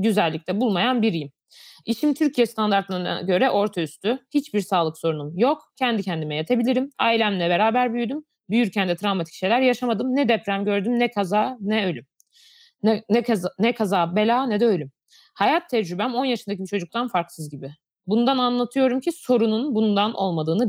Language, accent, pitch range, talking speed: Turkish, native, 190-250 Hz, 155 wpm